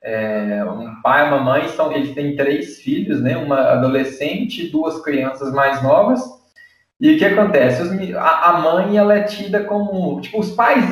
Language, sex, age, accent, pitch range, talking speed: Portuguese, male, 20-39, Brazilian, 150-205 Hz, 185 wpm